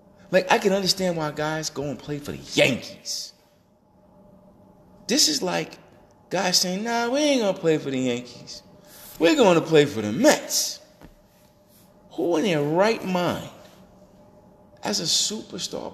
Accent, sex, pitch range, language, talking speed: American, male, 175-205 Hz, English, 155 wpm